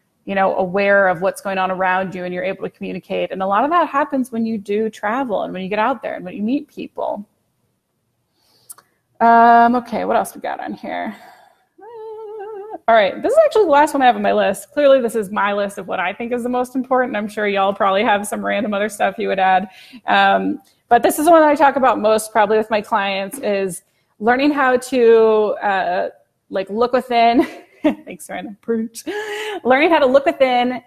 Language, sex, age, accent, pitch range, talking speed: English, female, 20-39, American, 205-275 Hz, 215 wpm